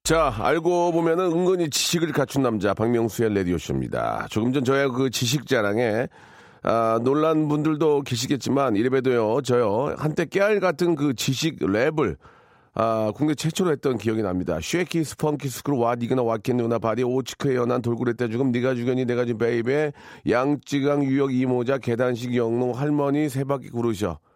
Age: 40-59